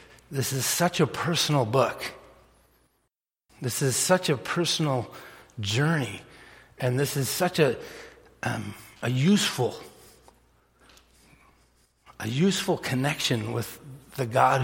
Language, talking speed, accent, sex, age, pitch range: English, 105 wpm, American, male, 60-79, 125-160 Hz